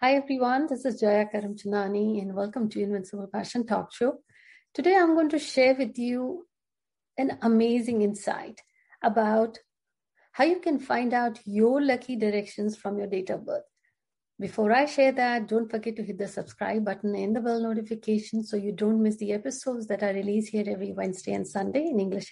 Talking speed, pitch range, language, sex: 185 wpm, 205-260 Hz, Hindi, female